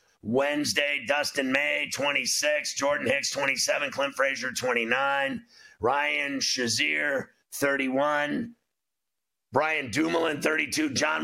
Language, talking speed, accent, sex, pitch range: English, 90 wpm, American, male, 135-155 Hz